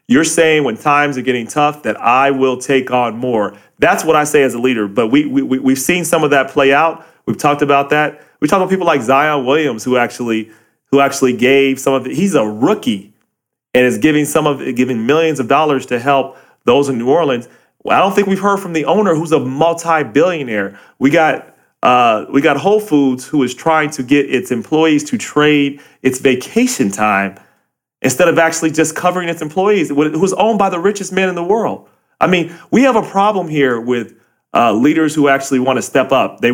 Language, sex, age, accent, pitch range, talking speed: English, male, 30-49, American, 130-160 Hz, 220 wpm